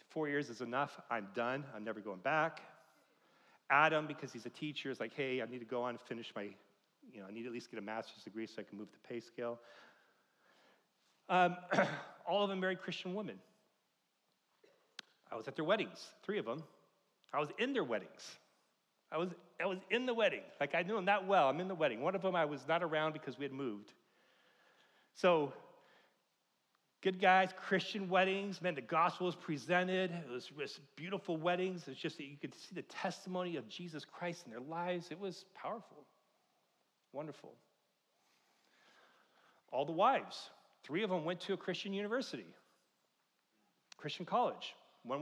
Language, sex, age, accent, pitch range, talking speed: English, male, 40-59, American, 135-185 Hz, 185 wpm